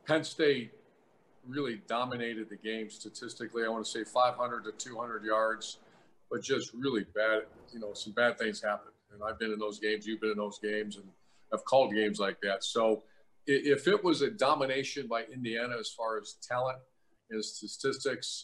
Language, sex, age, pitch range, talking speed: English, male, 50-69, 110-130 Hz, 180 wpm